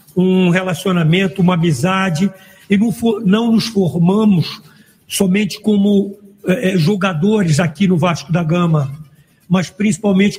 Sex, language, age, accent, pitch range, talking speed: male, Portuguese, 60-79, Brazilian, 180-210 Hz, 120 wpm